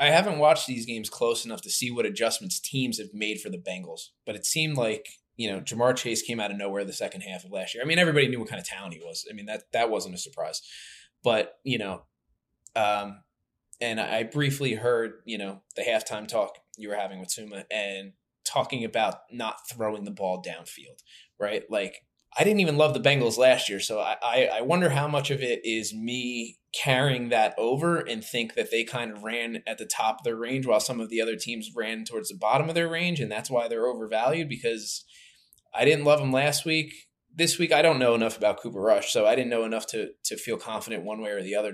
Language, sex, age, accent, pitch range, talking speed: English, male, 20-39, American, 110-150 Hz, 235 wpm